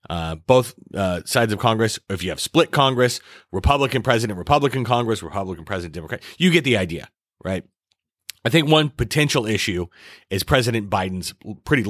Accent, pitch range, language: American, 95-130 Hz, English